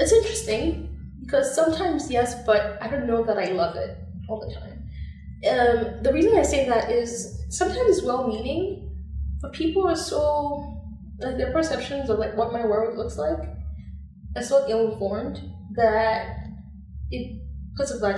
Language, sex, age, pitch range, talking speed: English, female, 10-29, 205-265 Hz, 155 wpm